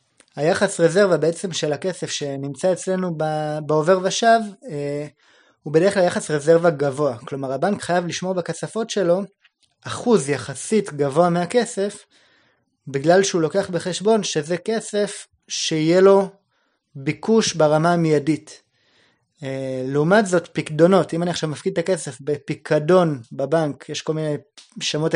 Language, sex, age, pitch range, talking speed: Hebrew, male, 20-39, 145-190 Hz, 120 wpm